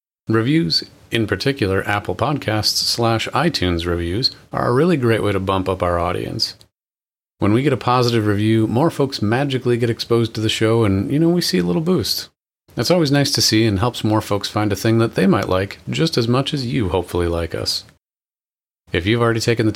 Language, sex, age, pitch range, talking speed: English, male, 40-59, 95-125 Hz, 210 wpm